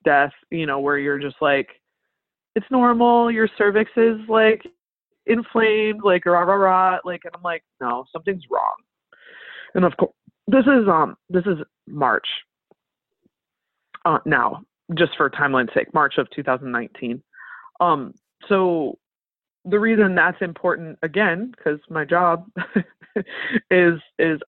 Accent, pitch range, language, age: American, 155-220 Hz, English, 20-39